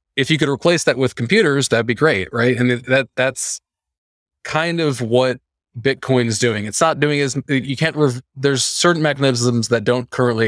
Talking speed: 190 wpm